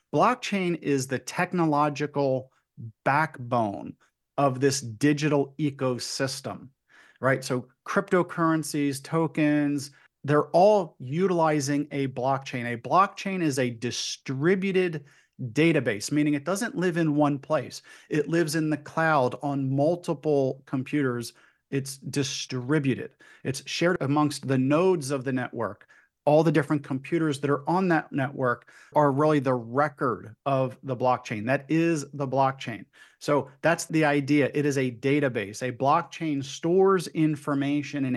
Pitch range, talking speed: 130-155 Hz, 130 wpm